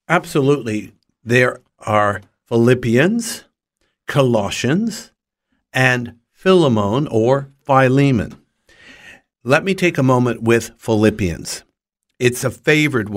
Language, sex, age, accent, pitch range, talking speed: English, male, 60-79, American, 110-140 Hz, 85 wpm